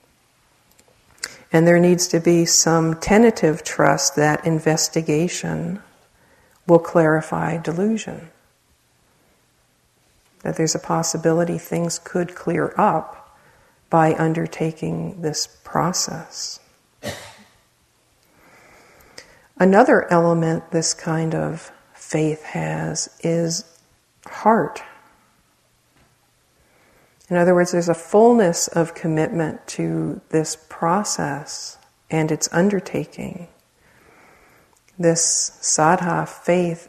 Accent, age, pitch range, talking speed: American, 50-69, 155-170 Hz, 85 wpm